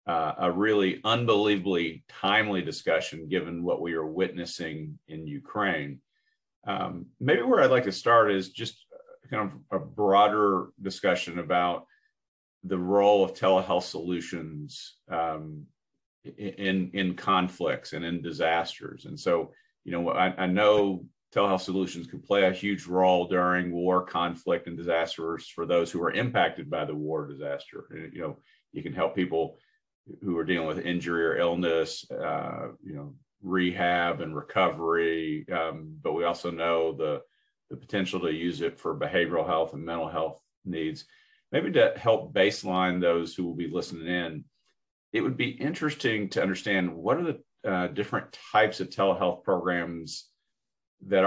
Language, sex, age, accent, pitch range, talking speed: English, male, 40-59, American, 85-100 Hz, 155 wpm